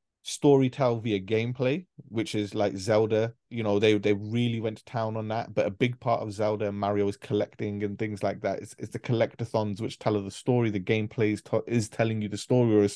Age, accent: 20-39, British